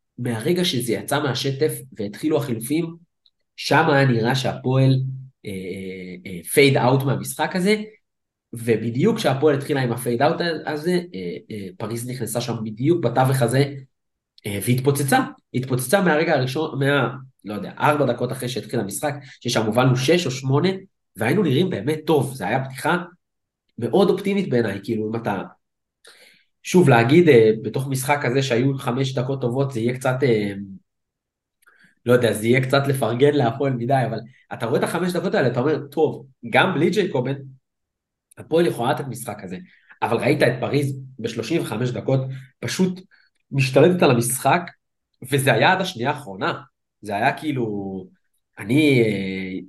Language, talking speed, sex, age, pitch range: Hebrew, 145 wpm, male, 30-49, 115-150 Hz